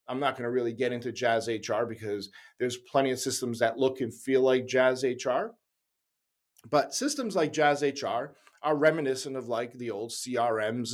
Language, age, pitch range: English, 40-59, 125-190 Hz